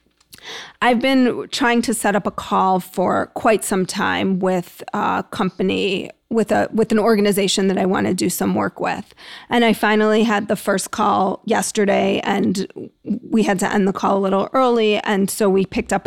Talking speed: 190 wpm